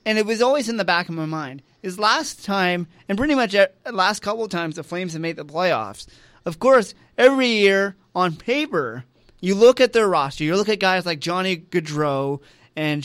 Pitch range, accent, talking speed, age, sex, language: 155-215 Hz, American, 210 wpm, 30-49, male, English